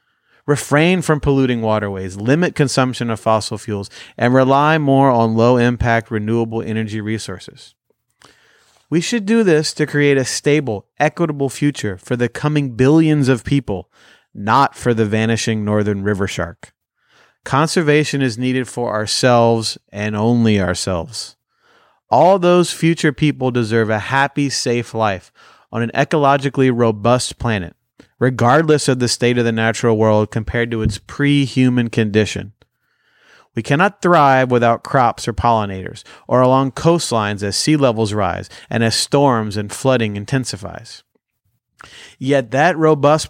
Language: English